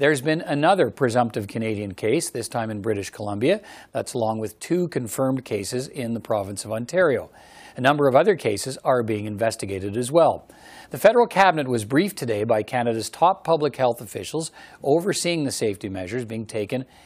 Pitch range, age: 110-145 Hz, 50-69